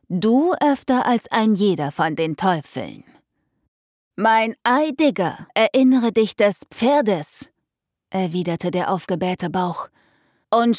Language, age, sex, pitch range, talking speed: German, 30-49, female, 185-245 Hz, 105 wpm